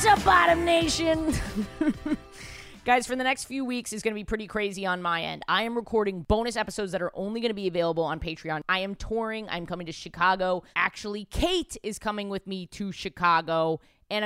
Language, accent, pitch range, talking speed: English, American, 165-210 Hz, 205 wpm